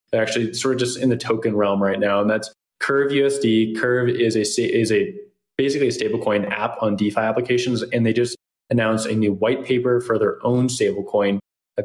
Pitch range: 105-125 Hz